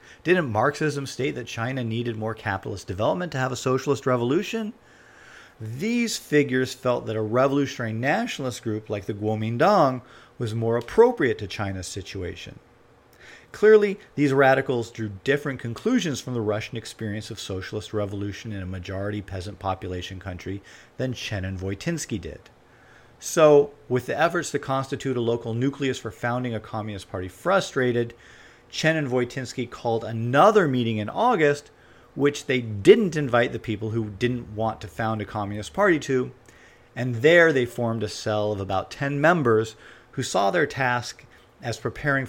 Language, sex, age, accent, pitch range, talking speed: English, male, 40-59, American, 105-135 Hz, 155 wpm